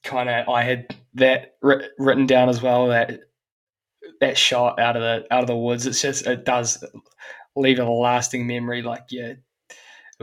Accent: Australian